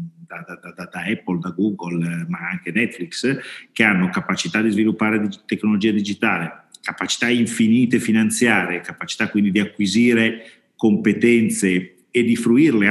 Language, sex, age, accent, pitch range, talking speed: Italian, male, 40-59, native, 100-125 Hz, 130 wpm